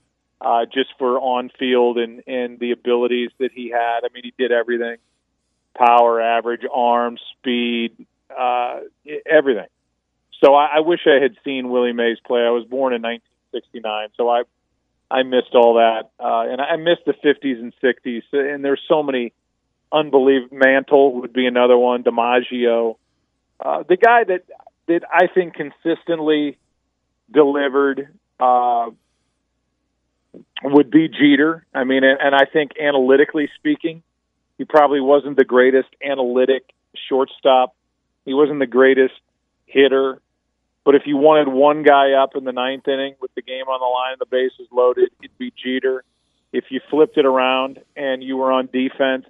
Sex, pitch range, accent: male, 120-140 Hz, American